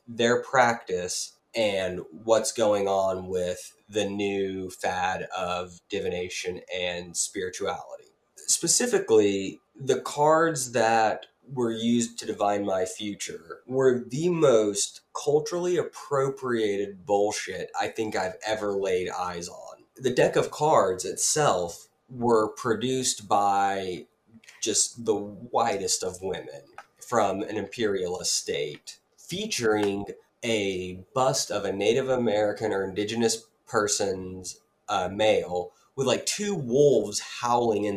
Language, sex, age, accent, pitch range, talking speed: English, male, 20-39, American, 100-140 Hz, 115 wpm